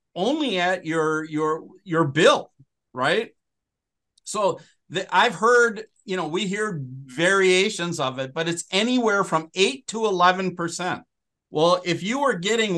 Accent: American